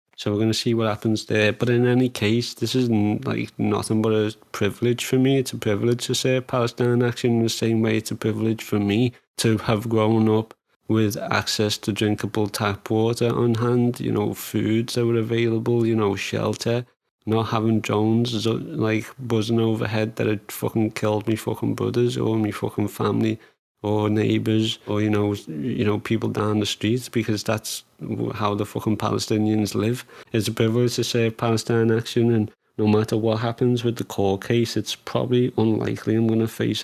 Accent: British